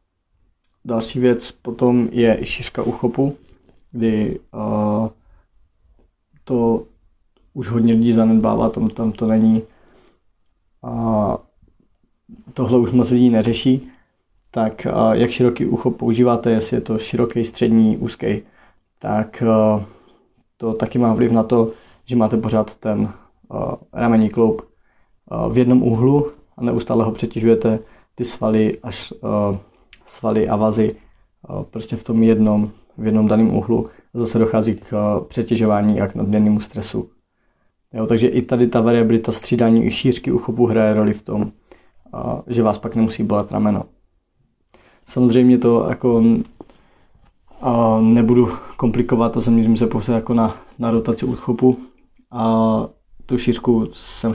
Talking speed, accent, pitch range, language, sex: 130 wpm, native, 110-120 Hz, Czech, male